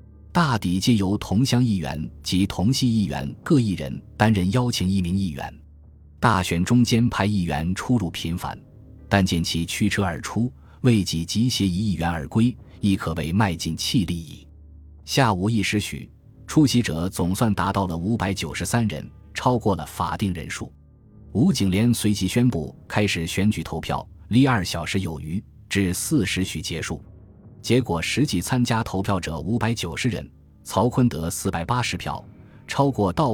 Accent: native